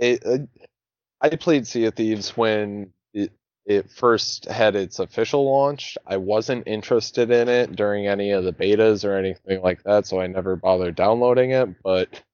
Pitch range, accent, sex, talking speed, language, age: 100-125 Hz, American, male, 175 wpm, English, 20-39